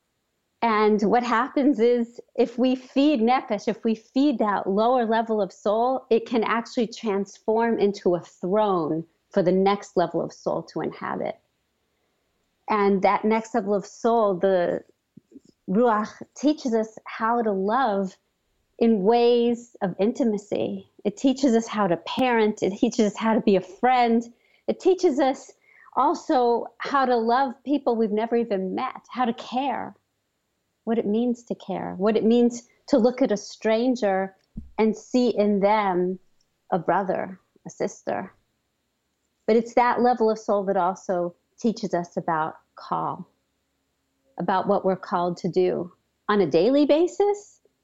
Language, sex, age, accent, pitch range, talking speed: English, female, 40-59, American, 195-245 Hz, 150 wpm